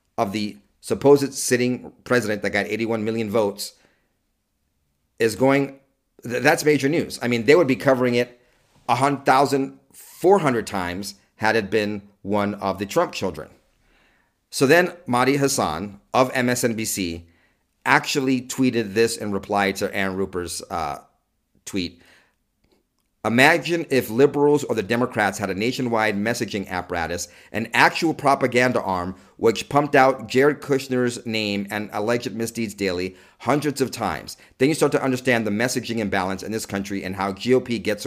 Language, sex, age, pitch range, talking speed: English, male, 50-69, 100-130 Hz, 145 wpm